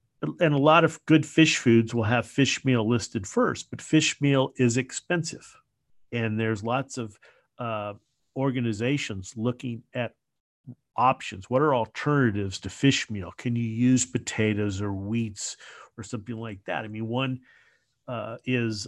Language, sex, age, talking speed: English, male, 50-69, 155 wpm